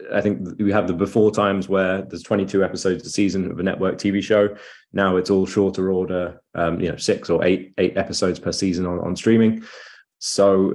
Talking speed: 205 wpm